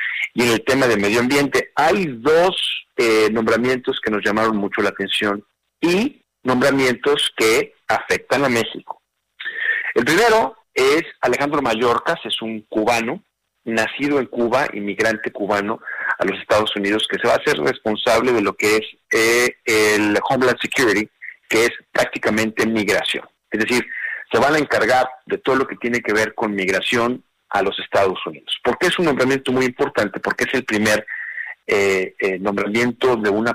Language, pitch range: Spanish, 110-140 Hz